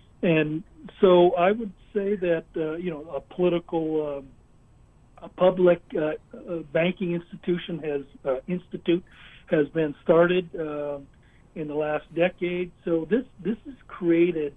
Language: English